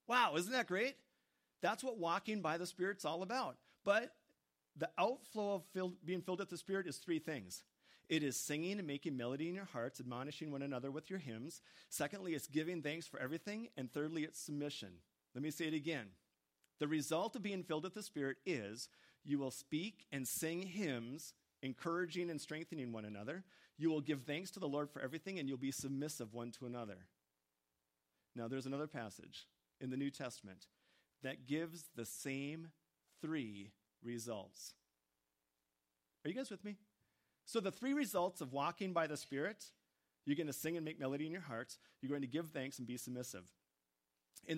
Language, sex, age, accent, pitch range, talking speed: English, male, 40-59, American, 125-175 Hz, 185 wpm